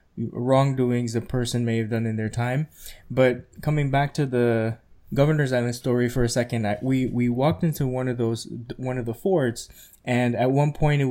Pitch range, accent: 110-130 Hz, American